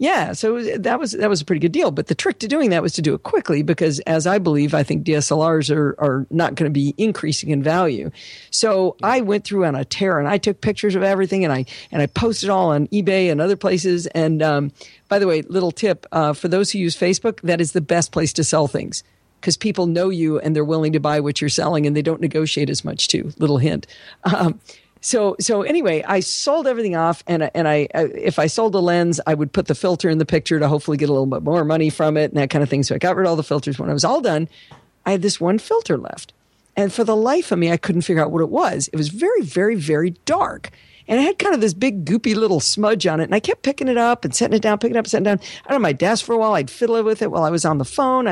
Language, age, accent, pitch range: English, 50-69, American, 155-205 Hz